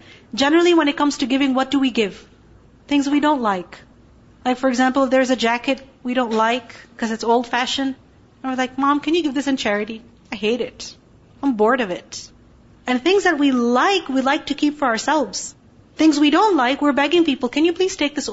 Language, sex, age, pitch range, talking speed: English, female, 40-59, 230-285 Hz, 220 wpm